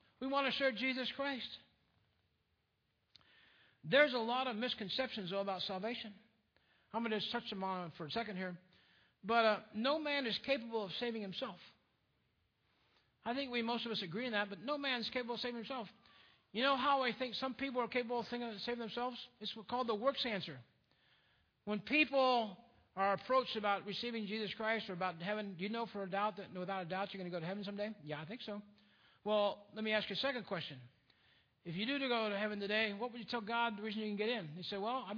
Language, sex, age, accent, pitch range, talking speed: English, male, 60-79, American, 195-240 Hz, 230 wpm